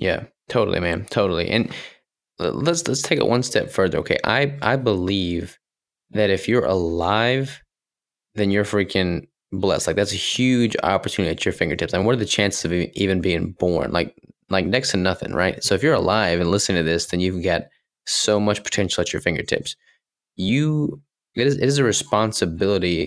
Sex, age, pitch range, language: male, 20-39, 90-105 Hz, English